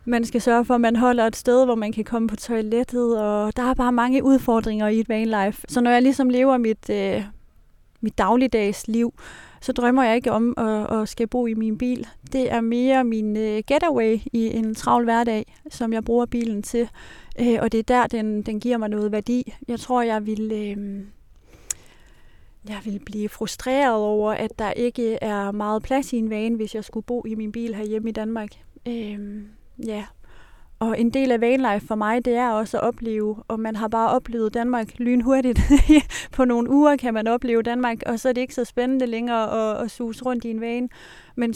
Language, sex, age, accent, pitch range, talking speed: Danish, female, 30-49, native, 215-245 Hz, 210 wpm